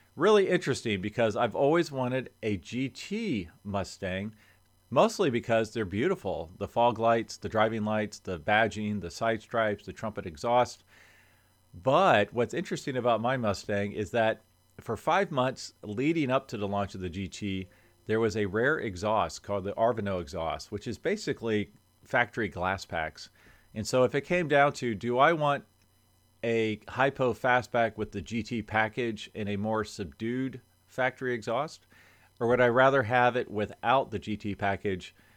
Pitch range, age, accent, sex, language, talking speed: 100-120 Hz, 40-59, American, male, English, 160 wpm